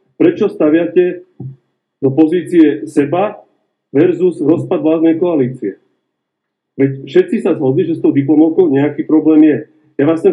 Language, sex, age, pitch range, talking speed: Slovak, male, 40-59, 135-205 Hz, 135 wpm